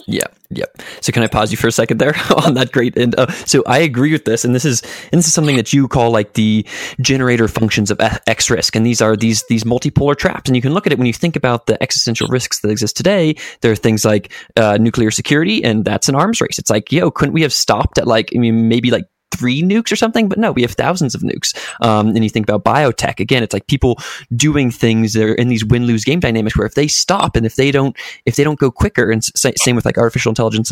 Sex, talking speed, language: male, 270 wpm, English